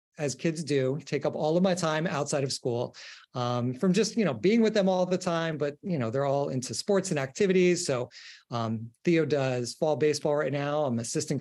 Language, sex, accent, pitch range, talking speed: English, male, American, 140-180 Hz, 220 wpm